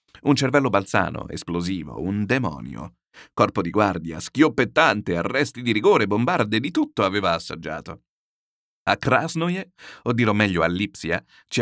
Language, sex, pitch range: Italian, male, 95-145 Hz